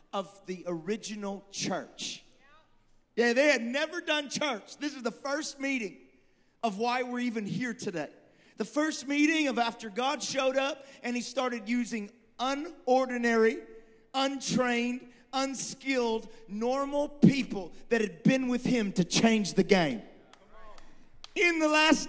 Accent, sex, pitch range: American, male, 220-265 Hz